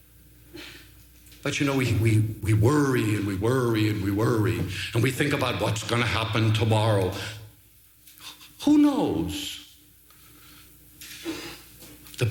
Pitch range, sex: 110-175 Hz, male